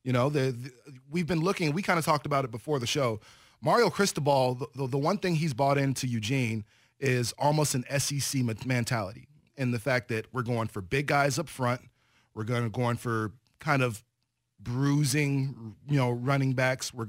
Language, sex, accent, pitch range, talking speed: English, male, American, 125-150 Hz, 195 wpm